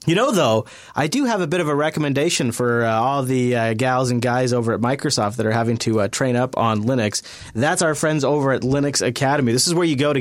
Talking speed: 260 wpm